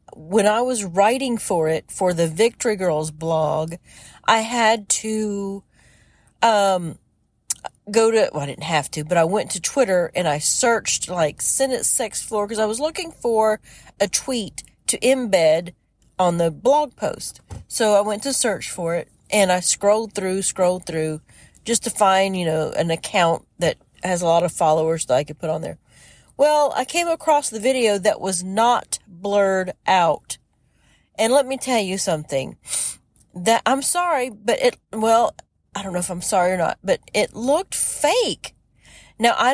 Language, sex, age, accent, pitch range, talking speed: English, female, 40-59, American, 175-235 Hz, 175 wpm